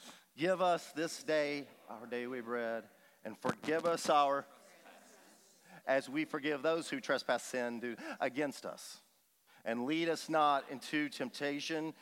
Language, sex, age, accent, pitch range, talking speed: English, male, 40-59, American, 115-155 Hz, 135 wpm